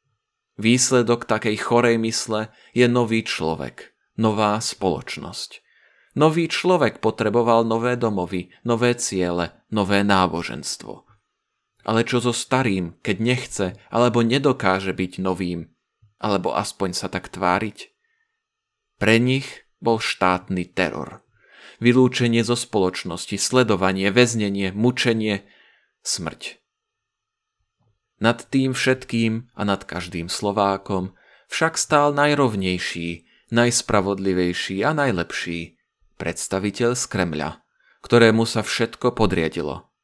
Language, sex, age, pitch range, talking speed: Slovak, male, 30-49, 95-120 Hz, 95 wpm